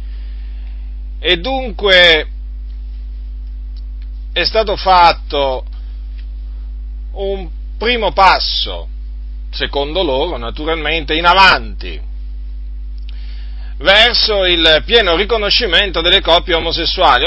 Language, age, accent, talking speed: Italian, 40-59, native, 70 wpm